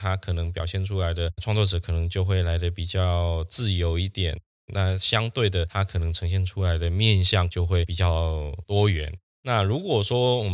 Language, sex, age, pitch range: Chinese, male, 20-39, 90-105 Hz